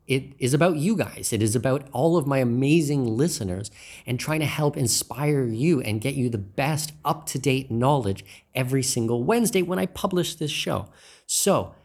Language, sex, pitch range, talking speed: English, male, 110-155 Hz, 175 wpm